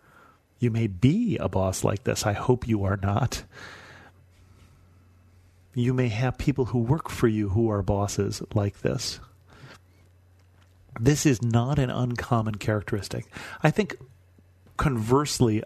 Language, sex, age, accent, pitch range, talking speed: English, male, 40-59, American, 100-125 Hz, 130 wpm